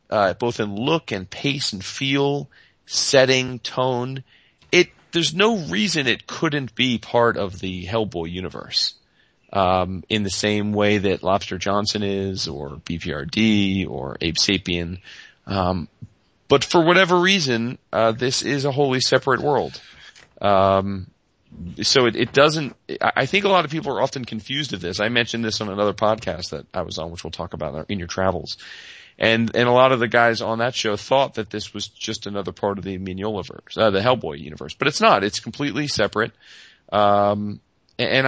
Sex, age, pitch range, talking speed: male, 30-49, 95-130 Hz, 180 wpm